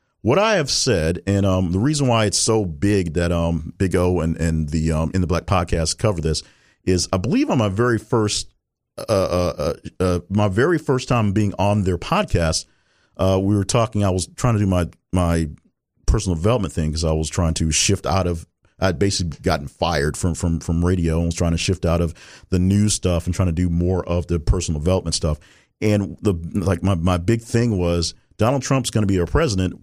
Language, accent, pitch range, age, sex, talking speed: English, American, 90-115 Hz, 50-69, male, 220 wpm